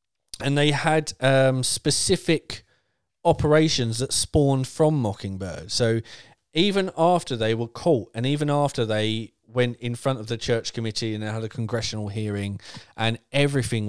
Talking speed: 150 wpm